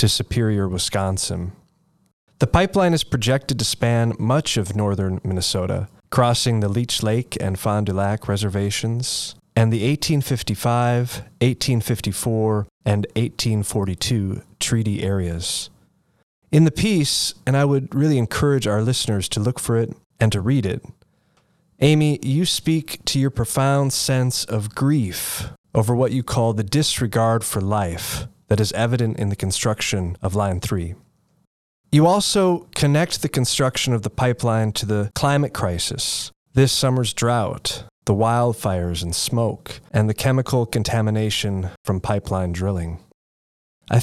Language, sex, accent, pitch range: English, male, American, 105-130 Hz